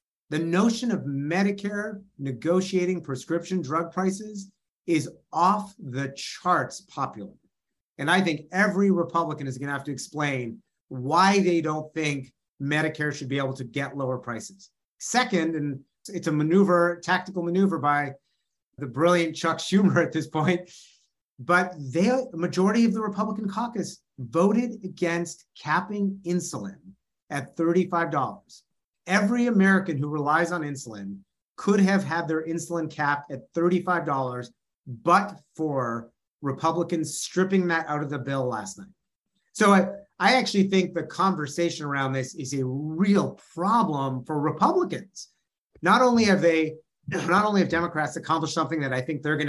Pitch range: 140-190 Hz